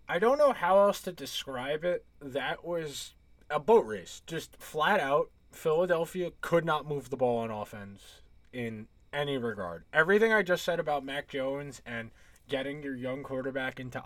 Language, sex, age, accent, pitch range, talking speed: English, male, 20-39, American, 120-175 Hz, 170 wpm